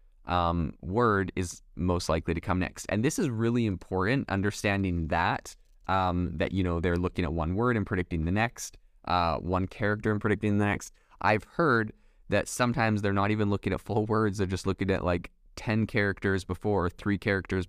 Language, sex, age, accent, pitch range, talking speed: English, male, 20-39, American, 85-105 Hz, 190 wpm